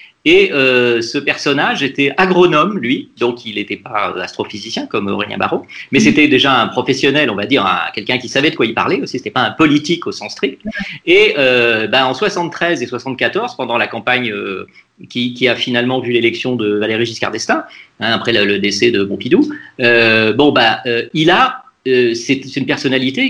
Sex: male